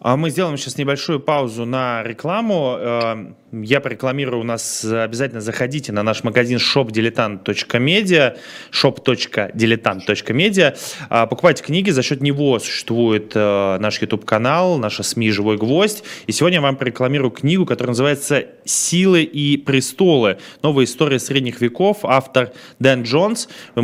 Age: 20-39